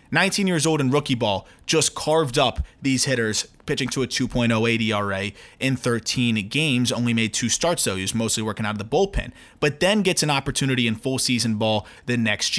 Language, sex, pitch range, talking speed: English, male, 115-150 Hz, 205 wpm